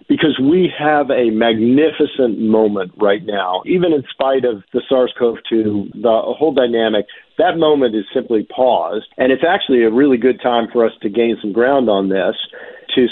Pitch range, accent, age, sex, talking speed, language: 115-155 Hz, American, 50-69, male, 175 wpm, English